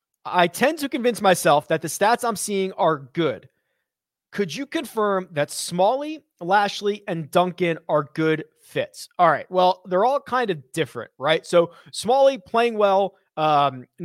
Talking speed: 160 wpm